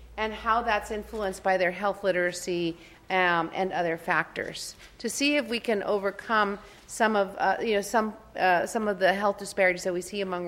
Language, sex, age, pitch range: English, female, 40-59, 180-210 Hz